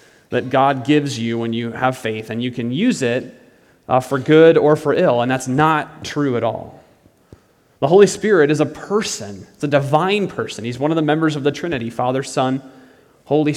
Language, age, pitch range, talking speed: English, 30-49, 120-160 Hz, 205 wpm